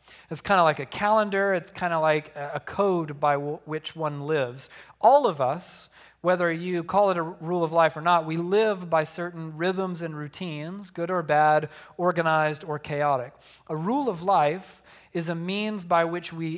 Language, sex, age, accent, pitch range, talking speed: English, male, 40-59, American, 150-180 Hz, 190 wpm